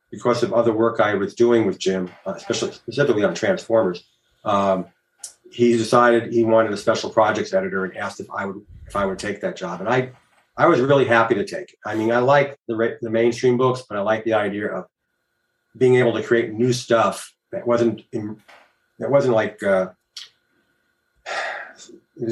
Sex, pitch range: male, 105-125 Hz